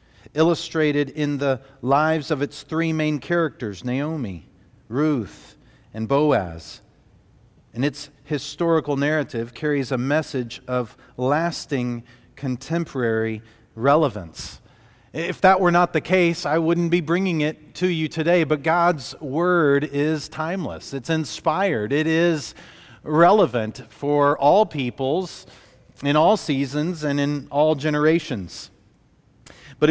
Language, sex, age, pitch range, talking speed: English, male, 40-59, 125-160 Hz, 120 wpm